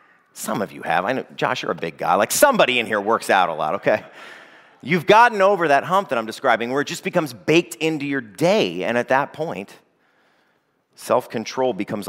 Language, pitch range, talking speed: English, 105-140 Hz, 210 wpm